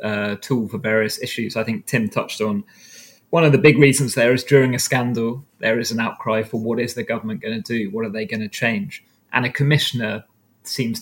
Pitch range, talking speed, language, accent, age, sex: 115-135 Hz, 230 wpm, English, British, 20-39, male